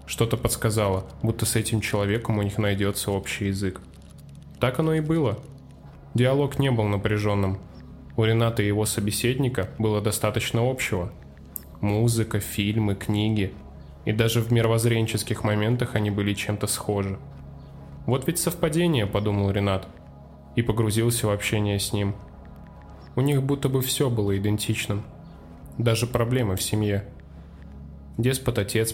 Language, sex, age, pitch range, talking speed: Russian, male, 10-29, 100-115 Hz, 130 wpm